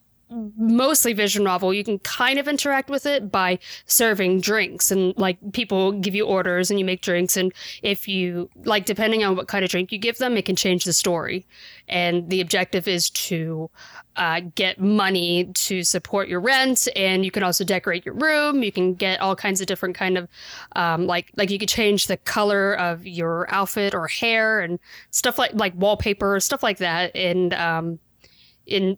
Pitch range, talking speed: 180-215 Hz, 195 wpm